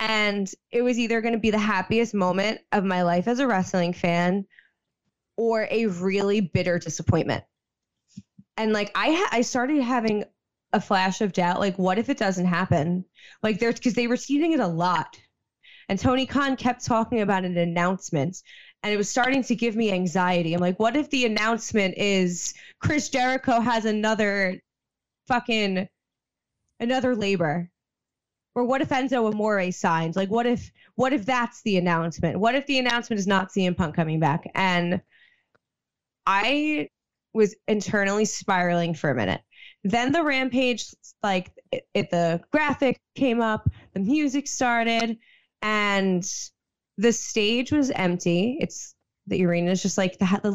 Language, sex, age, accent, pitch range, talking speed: English, female, 20-39, American, 185-240 Hz, 160 wpm